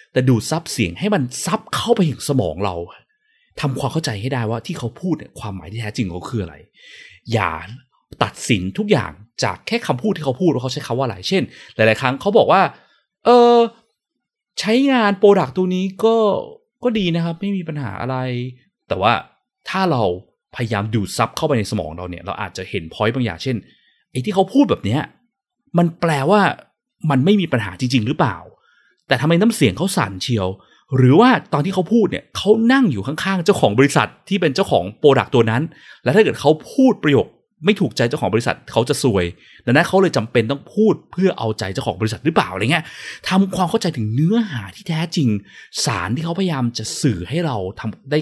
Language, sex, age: Thai, male, 20-39